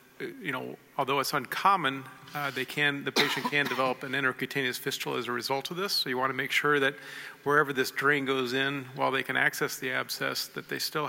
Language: English